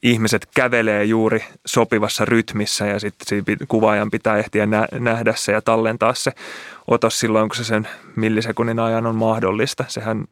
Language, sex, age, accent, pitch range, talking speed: Finnish, male, 20-39, native, 110-115 Hz, 145 wpm